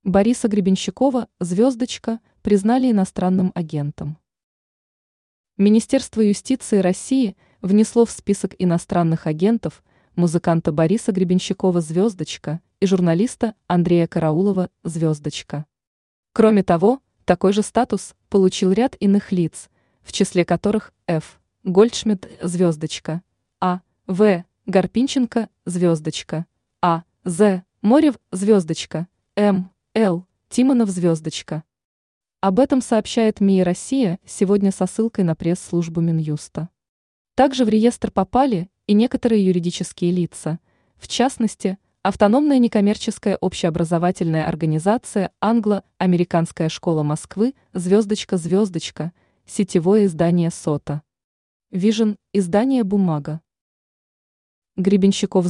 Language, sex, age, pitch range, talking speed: Russian, female, 20-39, 170-215 Hz, 90 wpm